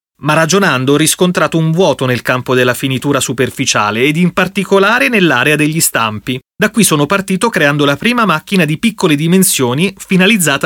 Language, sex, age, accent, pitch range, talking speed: Italian, male, 30-49, native, 130-170 Hz, 165 wpm